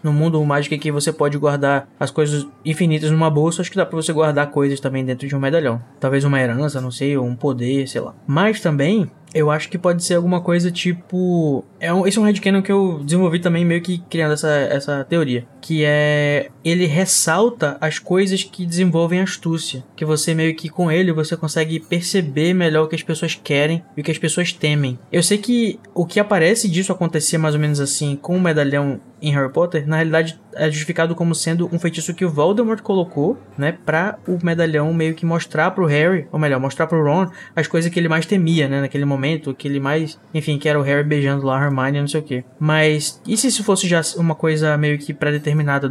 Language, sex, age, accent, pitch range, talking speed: Portuguese, male, 20-39, Brazilian, 145-170 Hz, 220 wpm